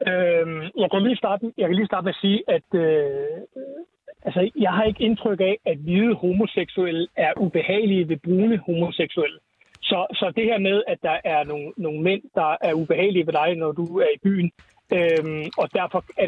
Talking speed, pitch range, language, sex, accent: 190 wpm, 180-240 Hz, Danish, male, native